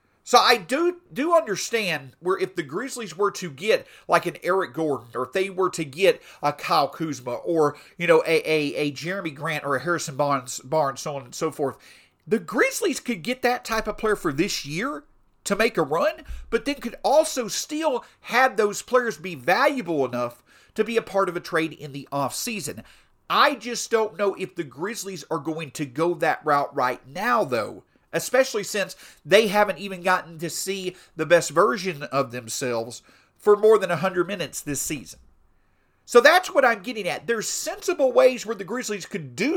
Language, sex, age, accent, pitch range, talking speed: English, male, 40-59, American, 155-230 Hz, 195 wpm